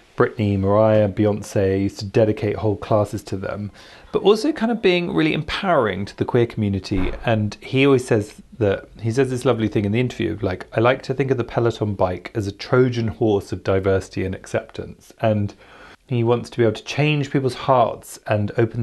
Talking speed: 200 wpm